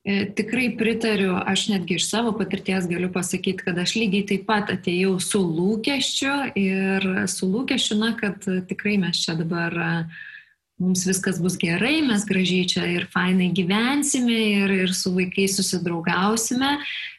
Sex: female